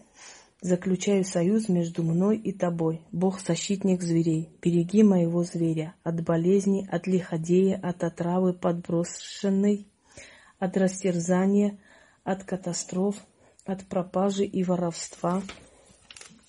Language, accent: Russian, native